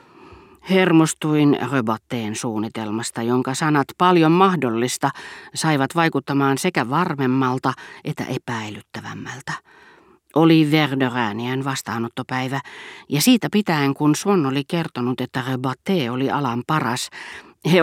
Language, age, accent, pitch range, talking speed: Finnish, 40-59, native, 125-160 Hz, 100 wpm